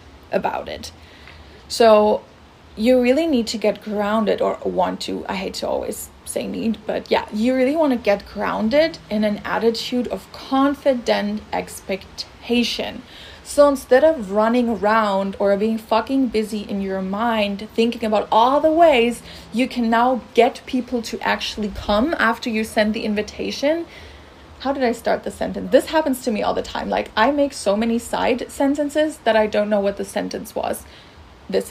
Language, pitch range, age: English, 215-260 Hz, 30-49